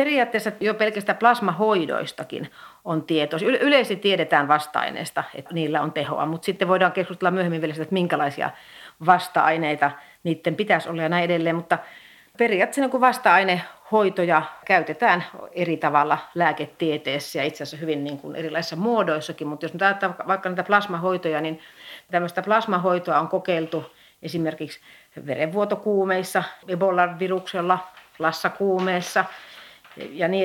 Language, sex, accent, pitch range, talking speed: Finnish, female, native, 160-195 Hz, 120 wpm